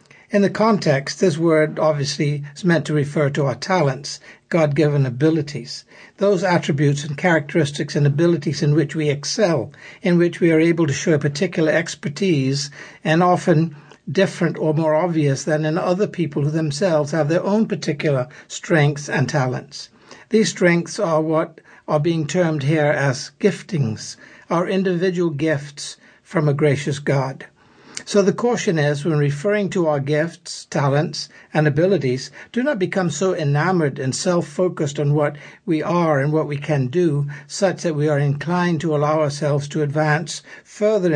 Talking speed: 160 wpm